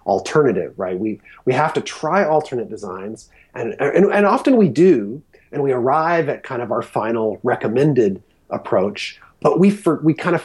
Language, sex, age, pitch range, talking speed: English, male, 30-49, 115-155 Hz, 180 wpm